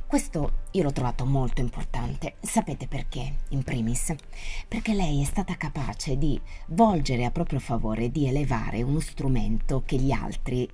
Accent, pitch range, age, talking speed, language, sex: native, 130-185 Hz, 30-49, 150 wpm, Italian, female